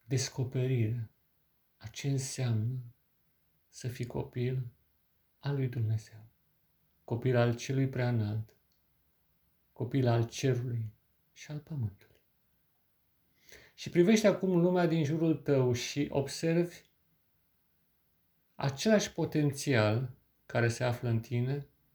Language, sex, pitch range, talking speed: Romanian, male, 110-140 Hz, 100 wpm